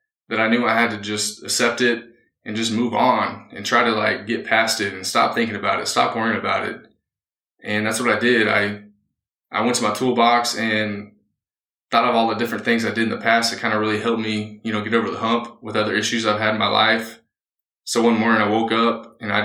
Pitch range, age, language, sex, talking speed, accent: 105-115 Hz, 20-39, English, male, 245 wpm, American